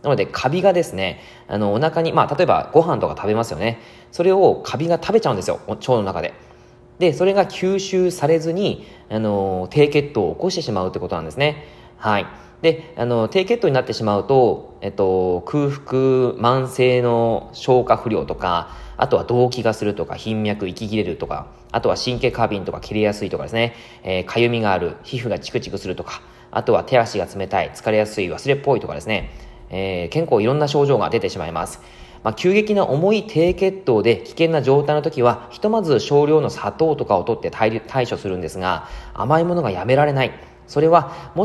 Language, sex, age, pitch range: Japanese, male, 20-39, 105-165 Hz